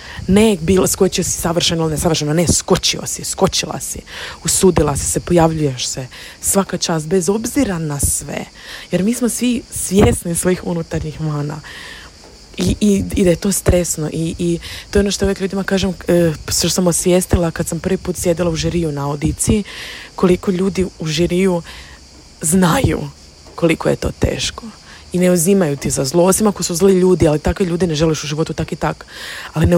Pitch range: 155-180 Hz